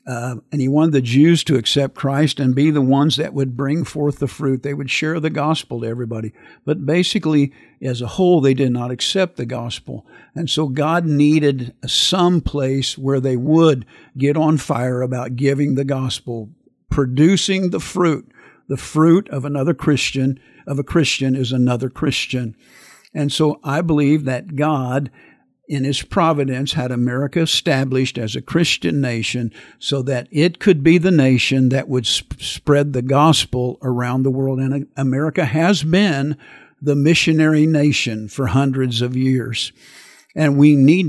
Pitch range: 130-155 Hz